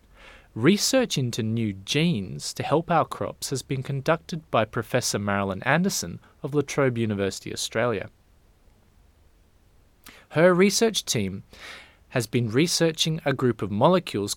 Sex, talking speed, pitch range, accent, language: male, 125 wpm, 95-145 Hz, Australian, English